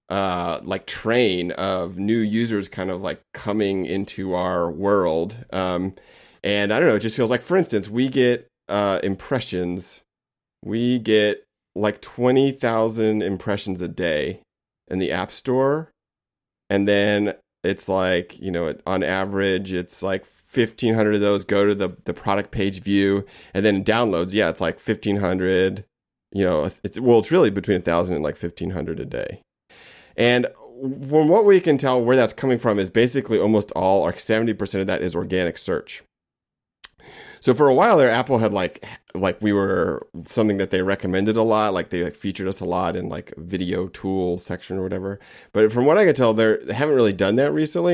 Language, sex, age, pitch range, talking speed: English, male, 30-49, 95-115 Hz, 180 wpm